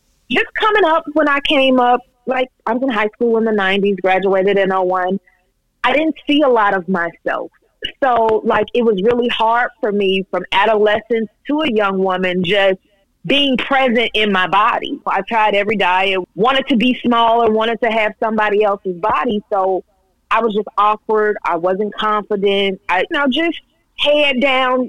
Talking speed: 180 wpm